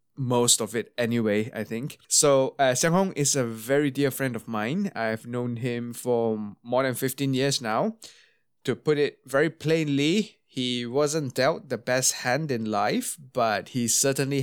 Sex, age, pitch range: male, 20-39, 115-145 Hz